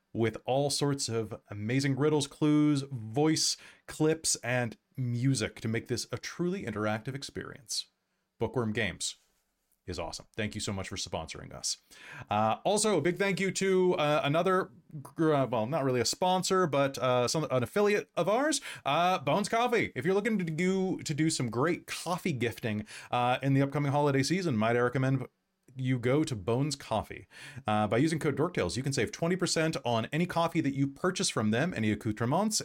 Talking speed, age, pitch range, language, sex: 180 wpm, 30-49, 115-160 Hz, English, male